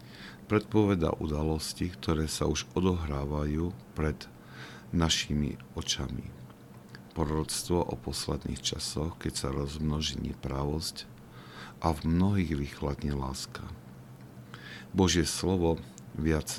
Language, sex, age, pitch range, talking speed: Slovak, male, 50-69, 70-80 Hz, 90 wpm